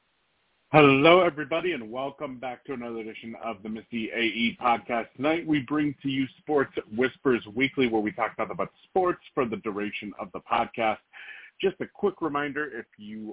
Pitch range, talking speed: 110-135 Hz, 170 wpm